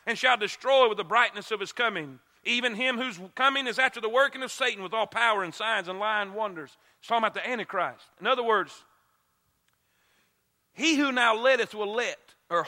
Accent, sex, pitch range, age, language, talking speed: American, male, 210-285 Hz, 40-59, English, 200 wpm